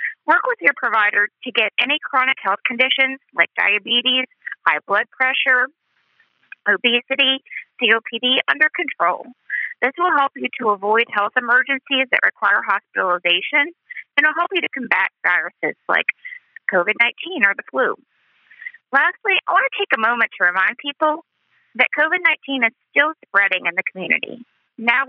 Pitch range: 225-290 Hz